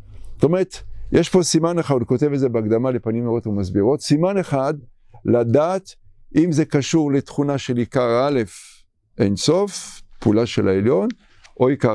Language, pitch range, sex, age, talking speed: English, 100-150 Hz, male, 50-69, 140 wpm